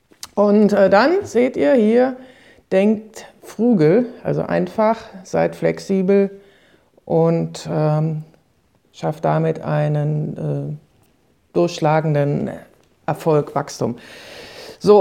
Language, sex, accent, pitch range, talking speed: German, female, German, 155-205 Hz, 90 wpm